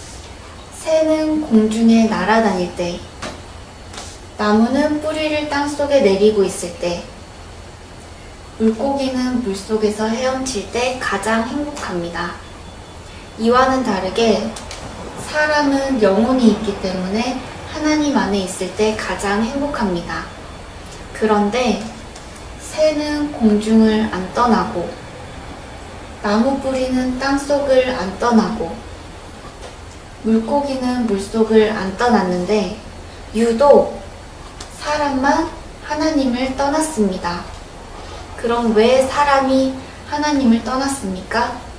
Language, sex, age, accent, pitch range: Korean, female, 20-39, native, 185-265 Hz